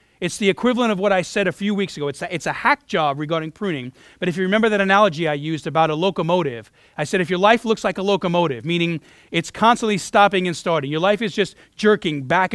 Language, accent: English, American